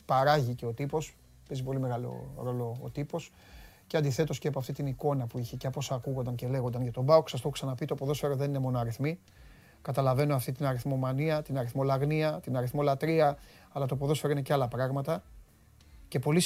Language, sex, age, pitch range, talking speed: Greek, male, 30-49, 125-160 Hz, 200 wpm